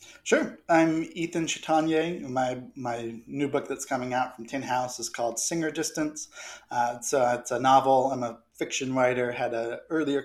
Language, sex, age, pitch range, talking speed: English, male, 20-39, 120-145 Hz, 185 wpm